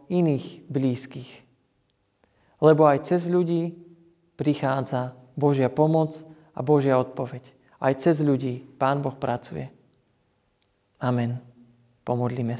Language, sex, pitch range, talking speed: Slovak, male, 135-165 Hz, 95 wpm